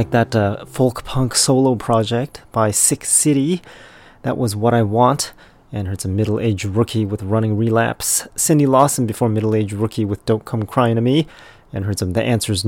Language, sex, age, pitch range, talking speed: English, male, 30-49, 105-130 Hz, 185 wpm